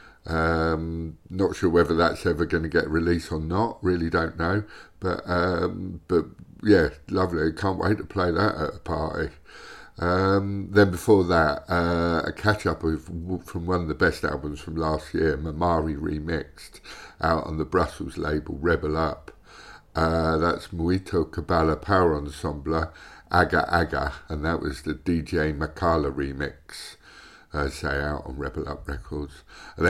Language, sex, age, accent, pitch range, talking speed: English, male, 50-69, British, 75-95 Hz, 155 wpm